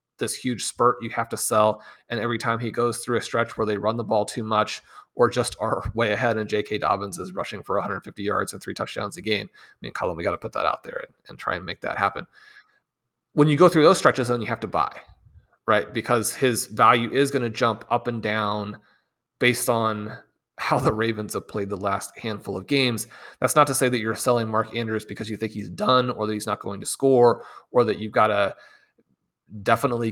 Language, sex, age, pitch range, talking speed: English, male, 30-49, 110-130 Hz, 235 wpm